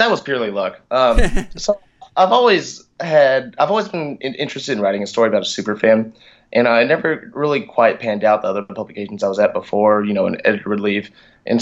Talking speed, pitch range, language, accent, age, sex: 205 wpm, 110-150 Hz, English, American, 20-39, male